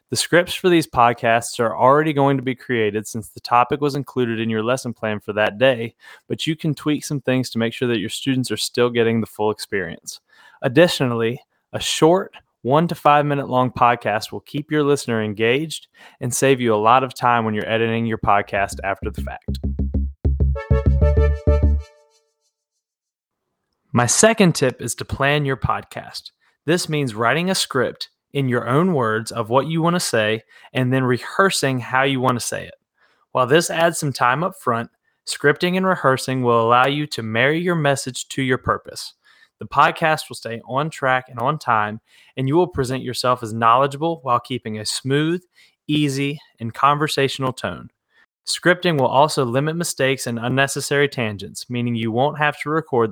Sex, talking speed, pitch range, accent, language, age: male, 180 wpm, 115-150 Hz, American, English, 20-39